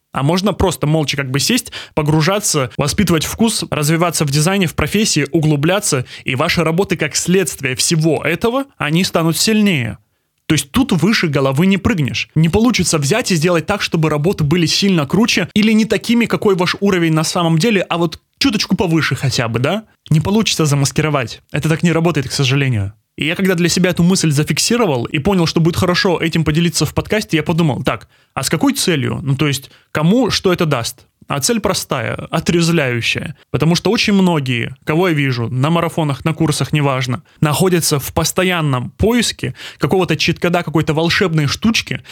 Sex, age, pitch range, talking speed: male, 20-39, 150-185 Hz, 180 wpm